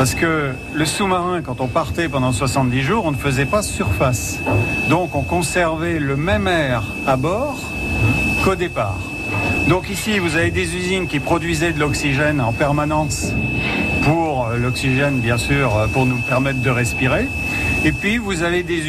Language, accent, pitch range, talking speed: French, French, 120-155 Hz, 160 wpm